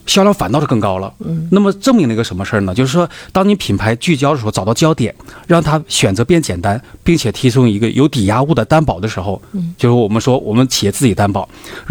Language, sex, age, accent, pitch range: Chinese, male, 30-49, native, 105-155 Hz